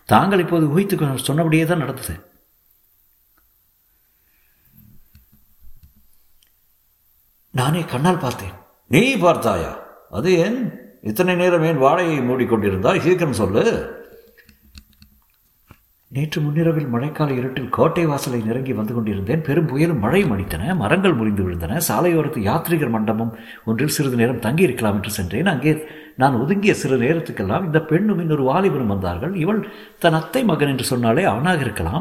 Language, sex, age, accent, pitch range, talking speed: Tamil, male, 60-79, native, 110-170 Hz, 95 wpm